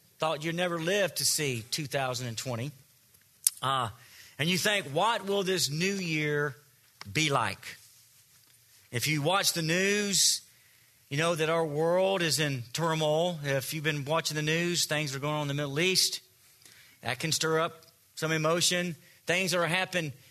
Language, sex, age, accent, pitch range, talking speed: English, male, 40-59, American, 130-175 Hz, 165 wpm